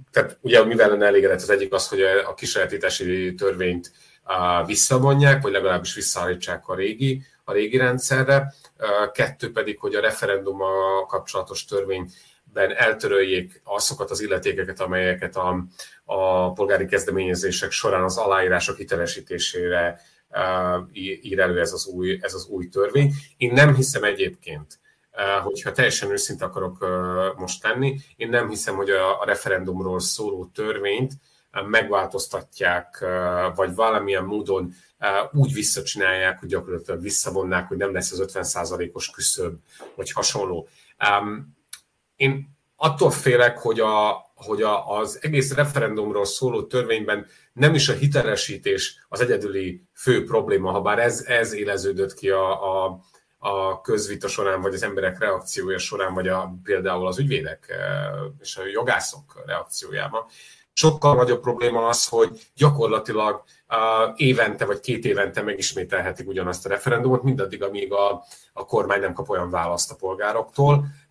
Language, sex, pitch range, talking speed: Hungarian, male, 95-140 Hz, 130 wpm